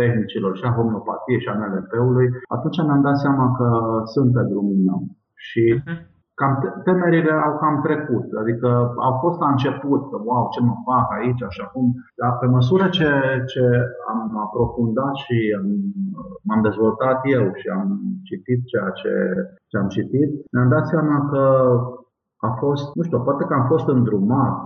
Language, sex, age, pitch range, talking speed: Romanian, male, 50-69, 120-150 Hz, 165 wpm